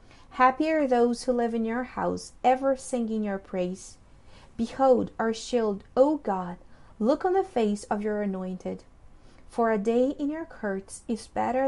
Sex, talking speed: female, 165 wpm